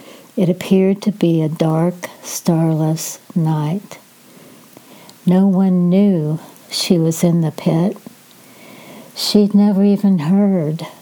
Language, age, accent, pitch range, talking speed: English, 60-79, American, 170-195 Hz, 110 wpm